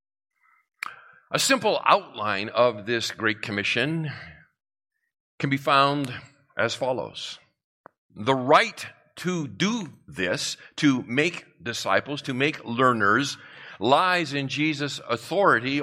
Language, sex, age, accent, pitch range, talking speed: English, male, 50-69, American, 110-155 Hz, 100 wpm